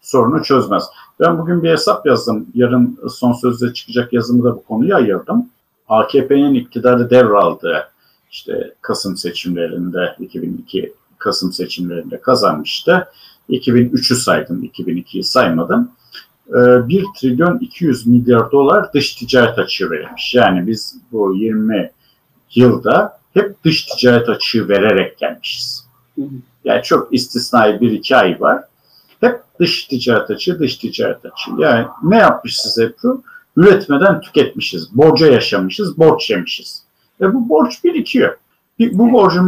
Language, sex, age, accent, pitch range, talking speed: Turkish, male, 50-69, native, 120-180 Hz, 125 wpm